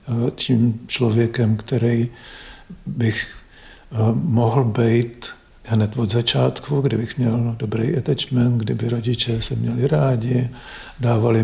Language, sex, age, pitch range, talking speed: Slovak, male, 50-69, 115-125 Hz, 100 wpm